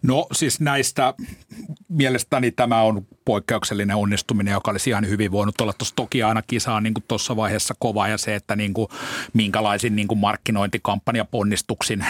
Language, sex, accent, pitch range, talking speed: Finnish, male, native, 105-125 Hz, 150 wpm